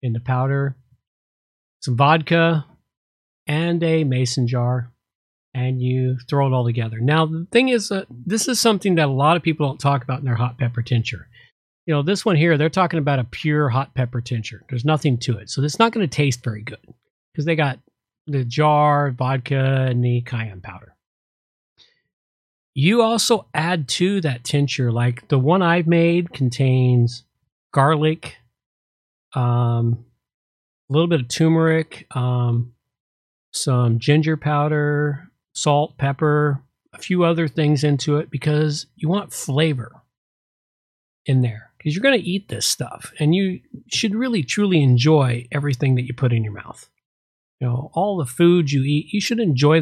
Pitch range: 120-160 Hz